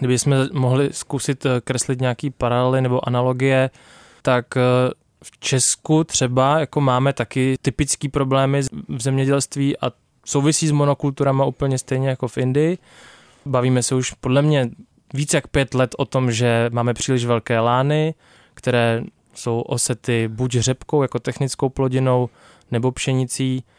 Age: 20-39